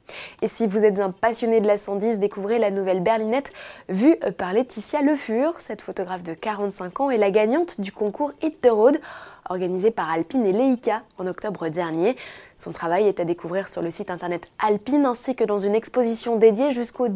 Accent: French